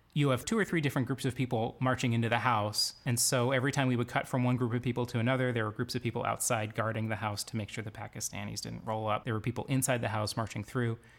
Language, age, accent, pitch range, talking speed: English, 30-49, American, 115-135 Hz, 280 wpm